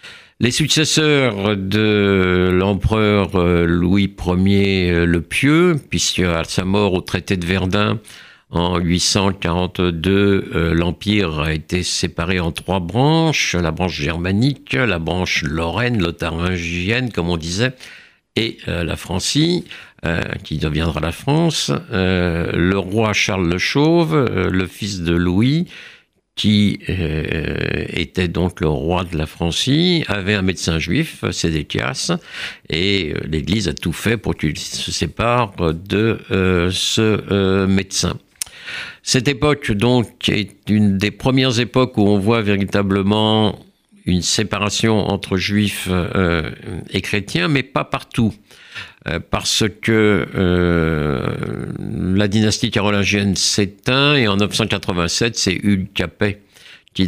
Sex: male